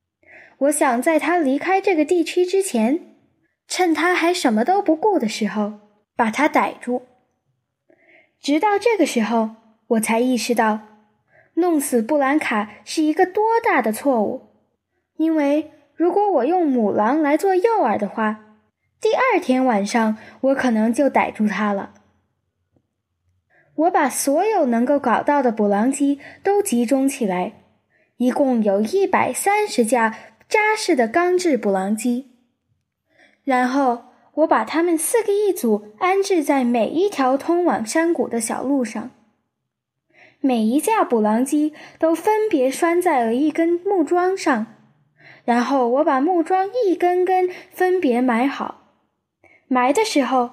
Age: 10-29